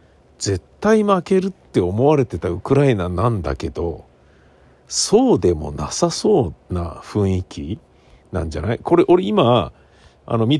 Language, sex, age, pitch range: Japanese, male, 50-69, 80-125 Hz